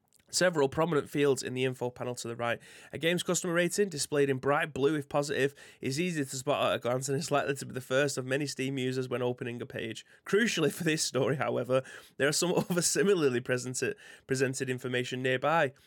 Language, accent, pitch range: English, British, 130-160 Hz